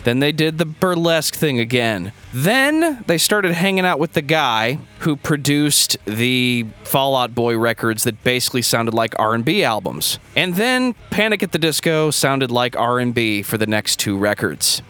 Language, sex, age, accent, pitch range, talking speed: English, male, 20-39, American, 125-180 Hz, 165 wpm